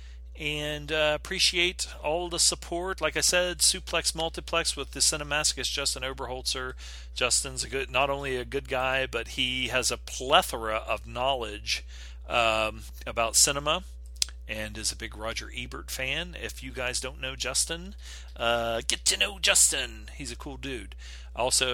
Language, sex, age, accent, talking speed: English, male, 40-59, American, 155 wpm